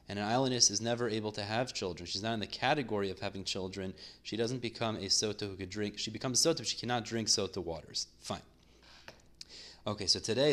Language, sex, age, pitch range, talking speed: English, male, 30-49, 105-135 Hz, 220 wpm